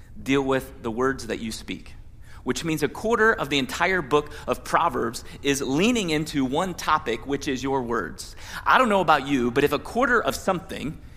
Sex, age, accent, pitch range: male, 30-49, American, 125-180 Hz